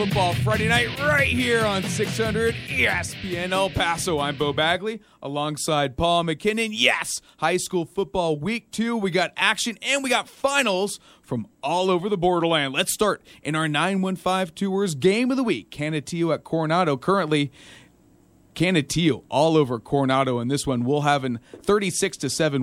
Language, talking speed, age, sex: English, 165 wpm, 30-49, male